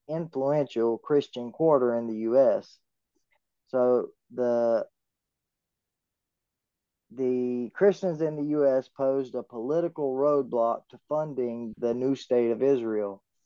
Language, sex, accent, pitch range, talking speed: English, male, American, 115-135 Hz, 105 wpm